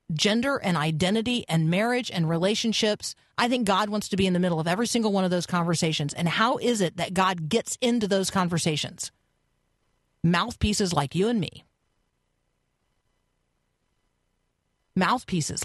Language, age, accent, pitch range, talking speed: English, 40-59, American, 155-210 Hz, 150 wpm